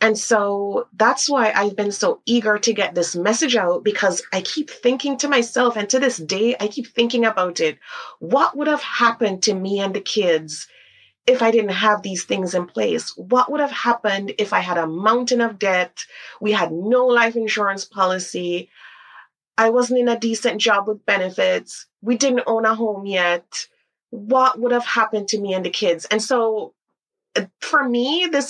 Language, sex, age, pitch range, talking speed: English, female, 30-49, 175-235 Hz, 190 wpm